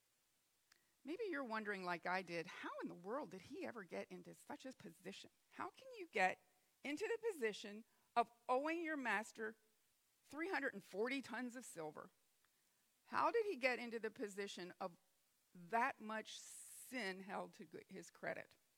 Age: 40-59